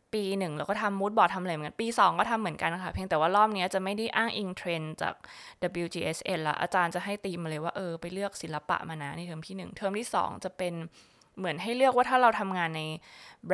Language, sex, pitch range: Thai, female, 165-195 Hz